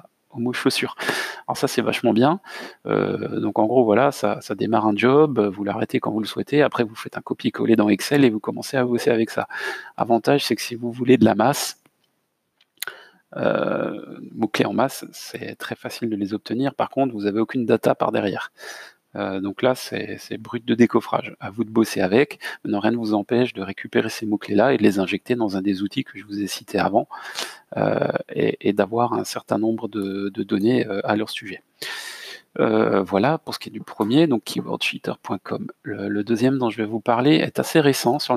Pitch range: 105-140 Hz